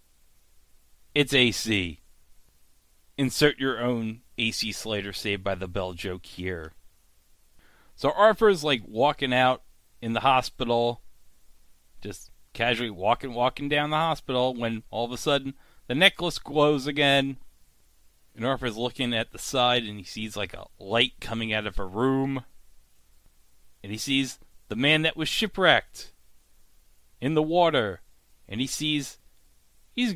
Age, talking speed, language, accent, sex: 30-49, 135 wpm, English, American, male